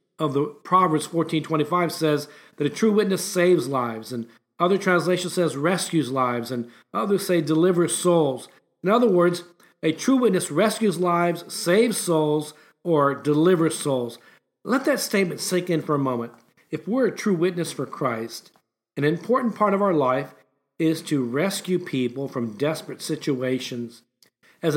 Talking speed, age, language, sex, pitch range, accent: 155 wpm, 50-69, English, male, 130-185 Hz, American